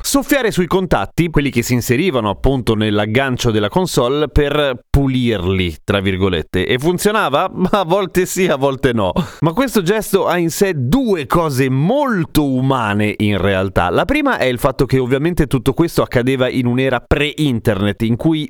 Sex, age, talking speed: male, 30-49, 165 wpm